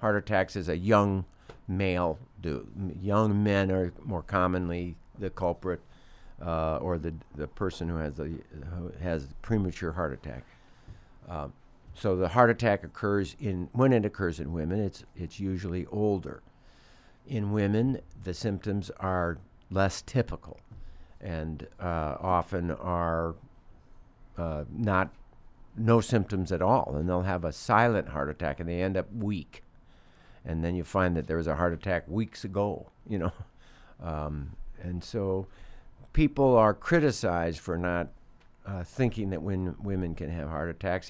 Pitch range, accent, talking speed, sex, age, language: 85-105 Hz, American, 150 wpm, male, 60-79, English